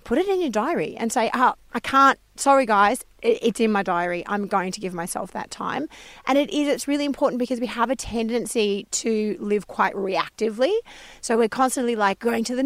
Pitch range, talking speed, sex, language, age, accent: 200-255 Hz, 215 wpm, female, English, 30-49, Australian